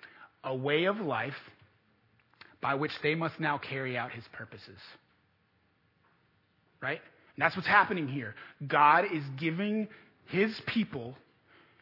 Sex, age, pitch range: male, 30-49, 125-170 Hz